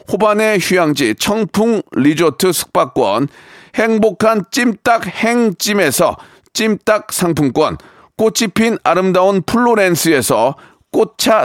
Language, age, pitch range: Korean, 40-59, 180-225 Hz